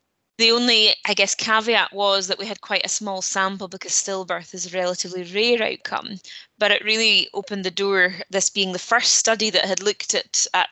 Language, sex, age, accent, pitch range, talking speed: English, female, 20-39, British, 180-205 Hz, 200 wpm